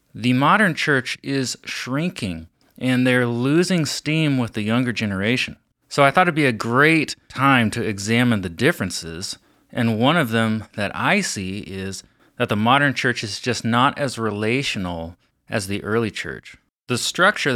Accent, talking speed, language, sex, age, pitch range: American, 165 wpm, English, male, 30-49, 100-135 Hz